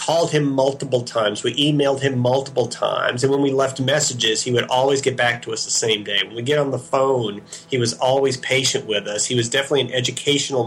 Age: 40-59